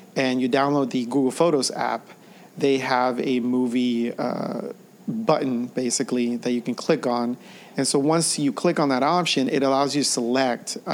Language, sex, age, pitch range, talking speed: English, male, 40-59, 125-150 Hz, 180 wpm